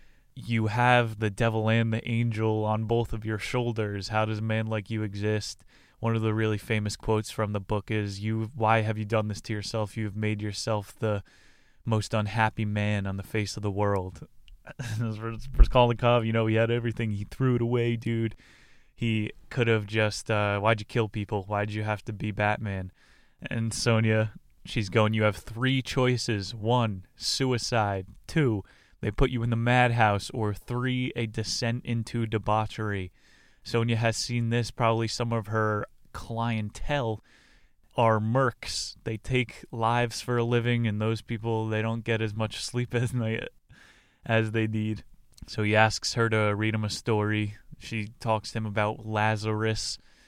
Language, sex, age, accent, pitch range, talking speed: English, male, 20-39, American, 105-115 Hz, 175 wpm